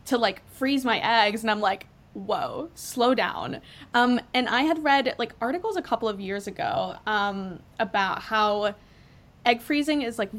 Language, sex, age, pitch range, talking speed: English, female, 20-39, 205-240 Hz, 175 wpm